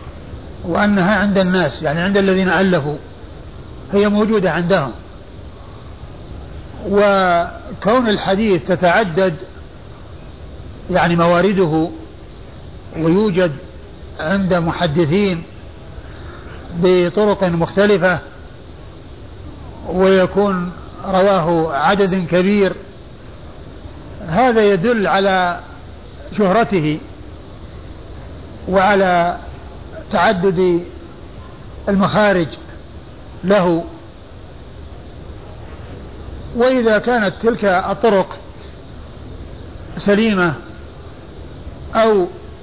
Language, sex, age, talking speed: Arabic, male, 50-69, 55 wpm